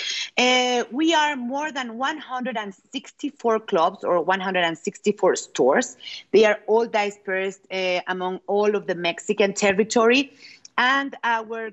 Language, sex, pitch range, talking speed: French, female, 185-230 Hz, 120 wpm